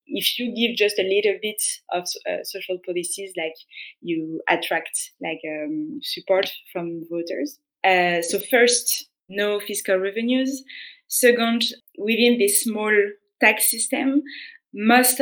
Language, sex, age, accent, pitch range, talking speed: English, female, 20-39, French, 180-245 Hz, 125 wpm